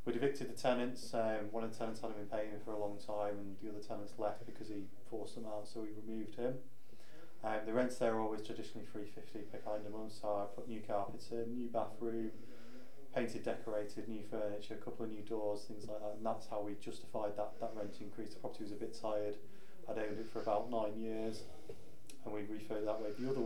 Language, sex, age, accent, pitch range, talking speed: English, male, 20-39, British, 105-115 Hz, 235 wpm